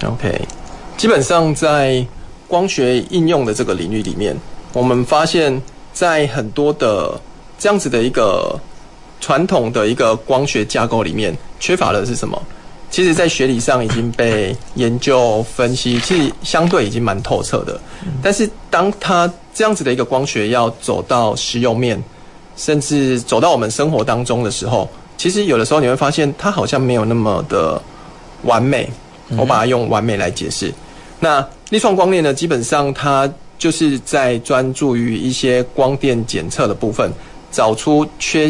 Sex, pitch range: male, 115-150 Hz